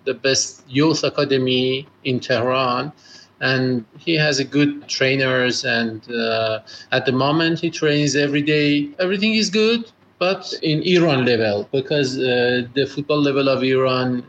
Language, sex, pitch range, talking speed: English, male, 125-150 Hz, 145 wpm